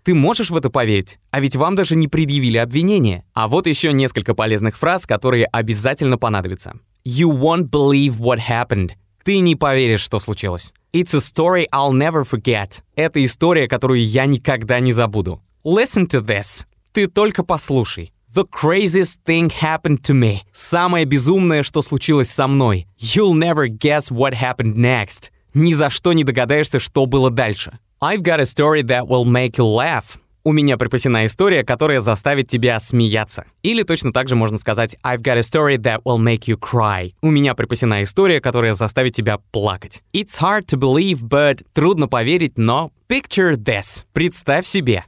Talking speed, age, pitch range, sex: 170 wpm, 20-39, 115-155 Hz, male